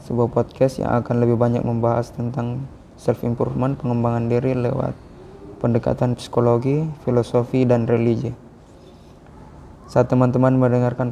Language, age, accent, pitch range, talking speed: Indonesian, 20-39, native, 120-130 Hz, 115 wpm